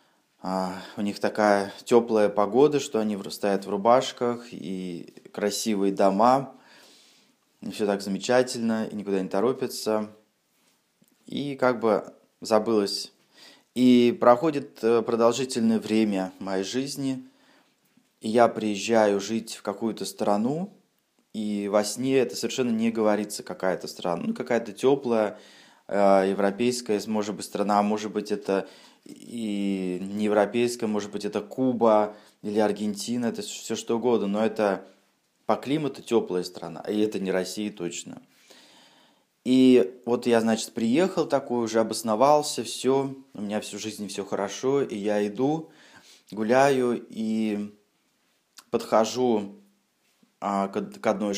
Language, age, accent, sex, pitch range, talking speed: Russian, 20-39, native, male, 100-120 Hz, 125 wpm